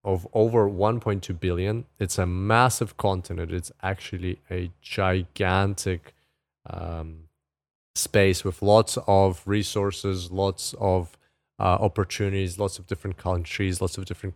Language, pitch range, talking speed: English, 90-105 Hz, 120 wpm